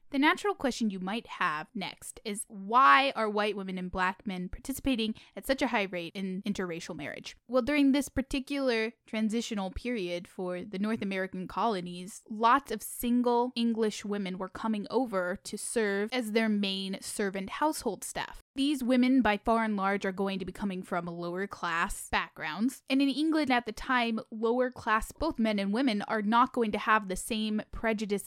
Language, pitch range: English, 195-250 Hz